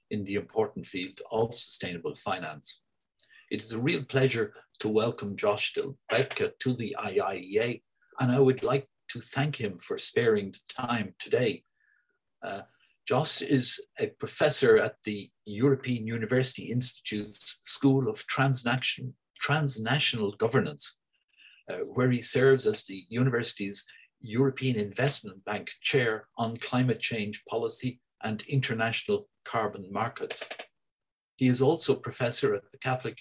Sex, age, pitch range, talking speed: male, 50-69, 110-140 Hz, 130 wpm